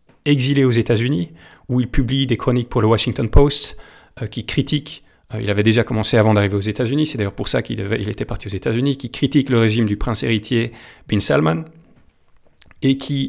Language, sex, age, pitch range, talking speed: French, male, 30-49, 110-130 Hz, 210 wpm